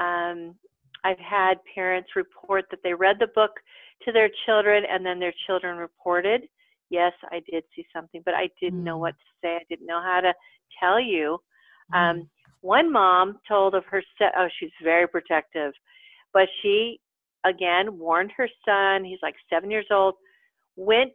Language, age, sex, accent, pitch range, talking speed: English, 50-69, female, American, 180-235 Hz, 170 wpm